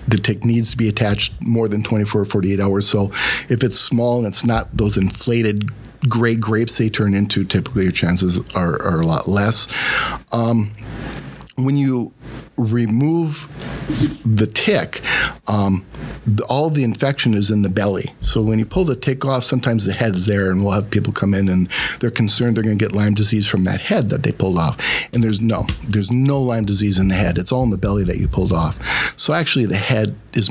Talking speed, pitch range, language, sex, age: 205 wpm, 100-125 Hz, English, male, 50-69